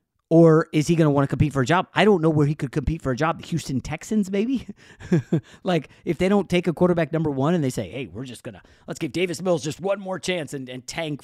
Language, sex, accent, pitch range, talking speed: English, male, American, 120-165 Hz, 285 wpm